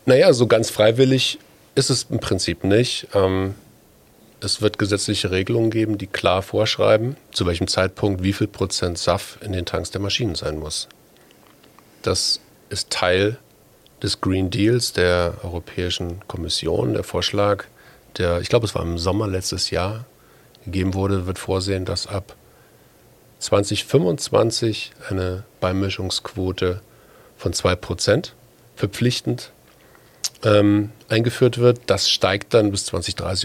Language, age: German, 40-59